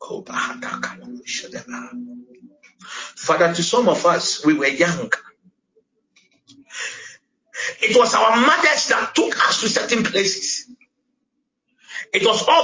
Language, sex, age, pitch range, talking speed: English, male, 50-69, 240-295 Hz, 100 wpm